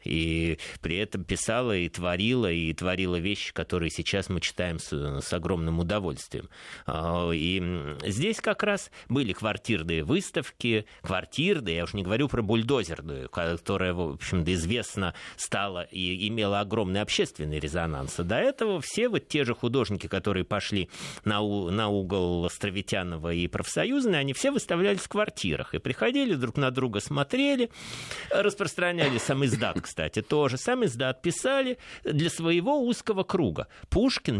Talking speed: 140 wpm